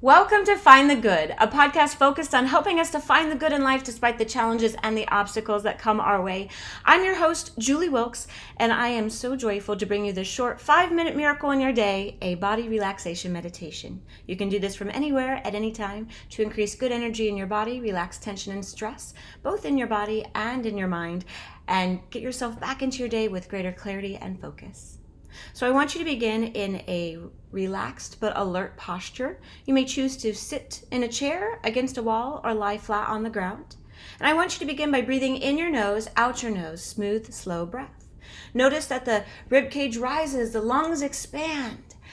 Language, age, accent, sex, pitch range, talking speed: English, 30-49, American, female, 200-270 Hz, 210 wpm